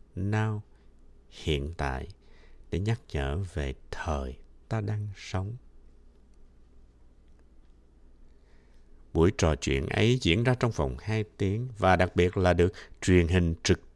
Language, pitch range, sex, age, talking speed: Vietnamese, 75-115 Hz, male, 60-79, 125 wpm